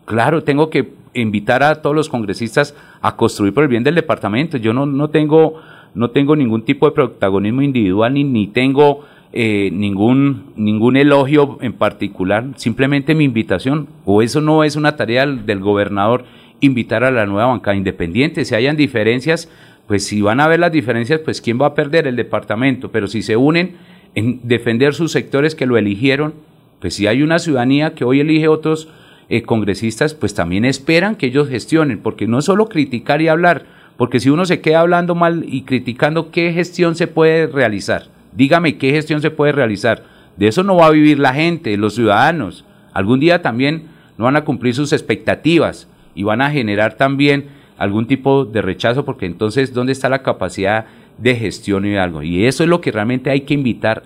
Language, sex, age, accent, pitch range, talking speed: Spanish, male, 40-59, Colombian, 110-155 Hz, 190 wpm